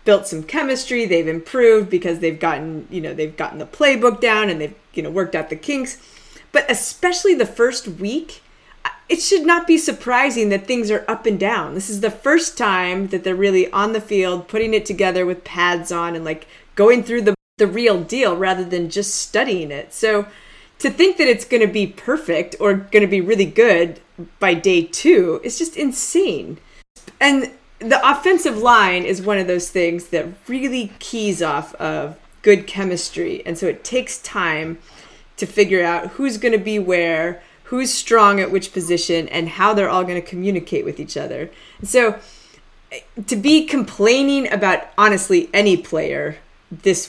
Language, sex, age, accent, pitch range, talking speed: English, female, 20-39, American, 175-245 Hz, 180 wpm